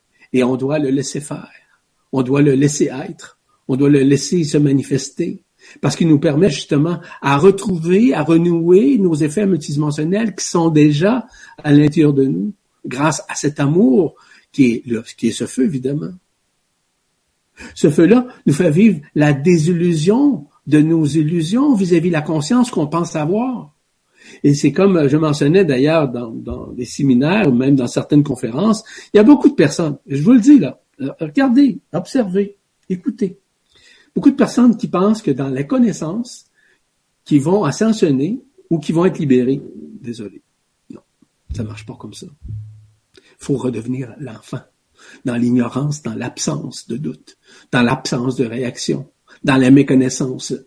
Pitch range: 135-190 Hz